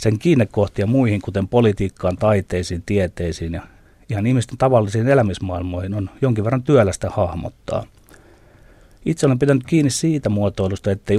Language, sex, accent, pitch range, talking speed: Finnish, male, native, 95-115 Hz, 130 wpm